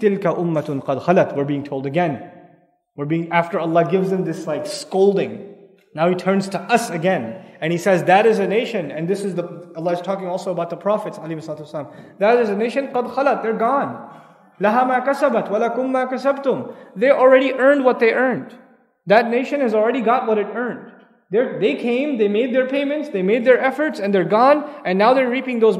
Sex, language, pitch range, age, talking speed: male, English, 195-270 Hz, 20-39, 180 wpm